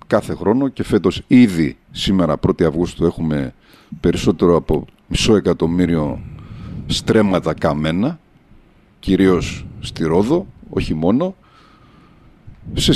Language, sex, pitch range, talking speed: Greek, male, 90-125 Hz, 95 wpm